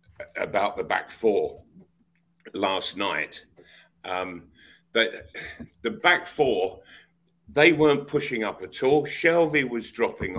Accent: British